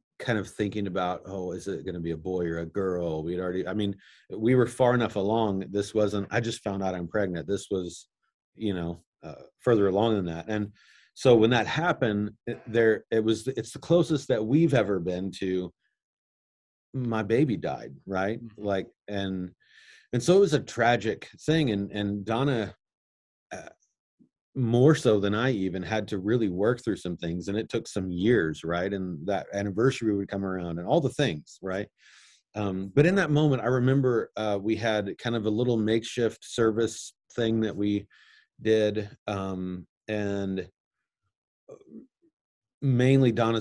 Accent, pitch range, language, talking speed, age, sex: American, 95-115 Hz, English, 175 wpm, 30-49, male